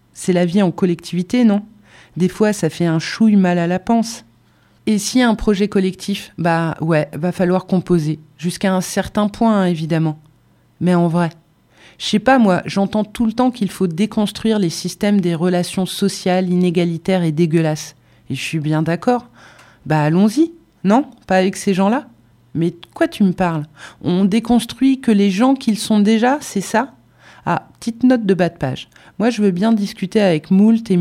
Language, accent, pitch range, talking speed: French, French, 170-215 Hz, 185 wpm